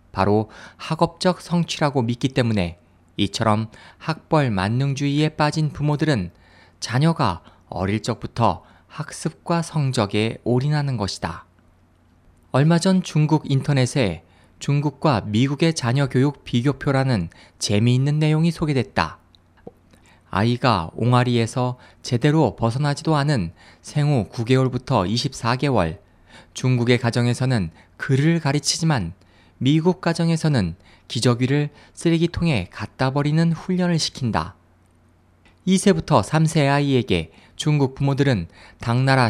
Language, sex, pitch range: Korean, male, 100-150 Hz